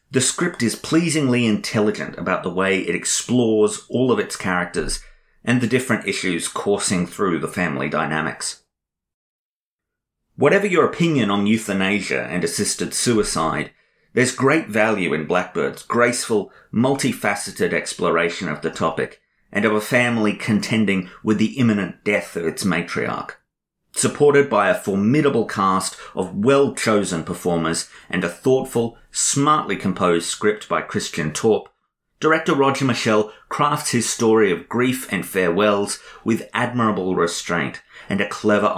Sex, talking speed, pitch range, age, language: male, 135 wpm, 100-125 Hz, 30-49, English